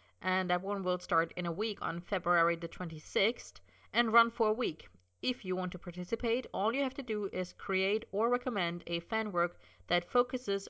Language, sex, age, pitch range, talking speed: English, female, 30-49, 160-215 Hz, 200 wpm